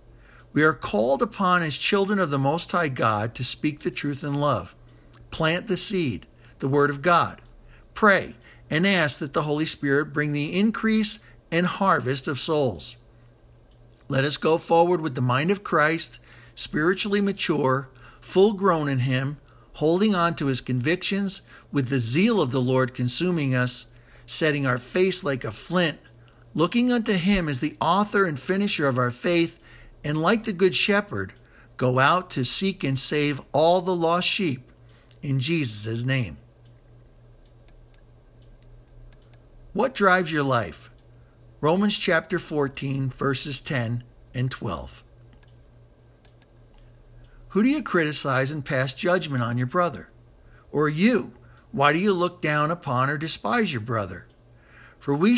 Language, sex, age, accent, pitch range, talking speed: English, male, 60-79, American, 120-175 Hz, 145 wpm